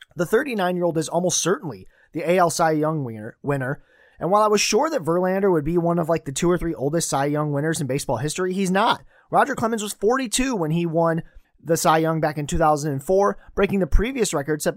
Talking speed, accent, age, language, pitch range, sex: 215 wpm, American, 30-49, English, 150-200 Hz, male